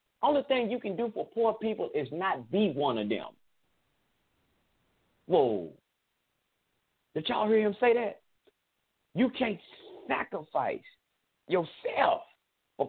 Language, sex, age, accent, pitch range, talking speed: English, male, 50-69, American, 135-220 Hz, 120 wpm